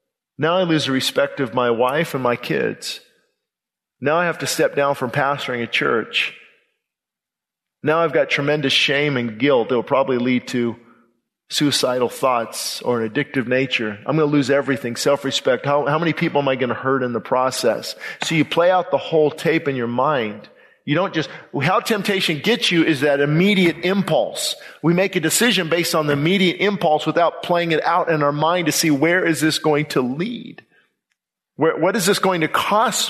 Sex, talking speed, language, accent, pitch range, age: male, 195 wpm, English, American, 140-185 Hz, 40-59